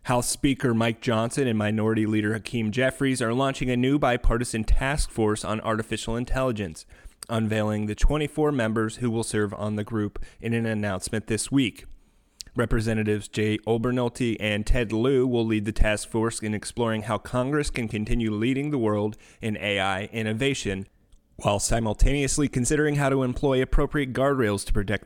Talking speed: 160 wpm